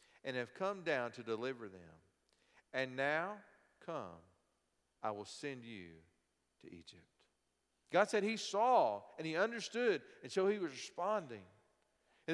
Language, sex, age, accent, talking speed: English, male, 50-69, American, 140 wpm